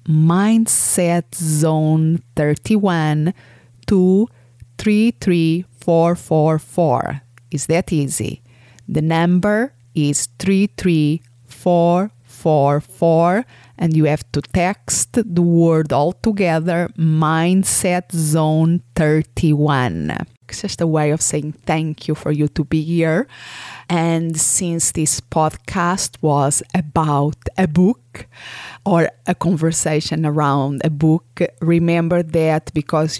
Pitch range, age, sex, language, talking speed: 145-170 Hz, 30-49, female, English, 110 wpm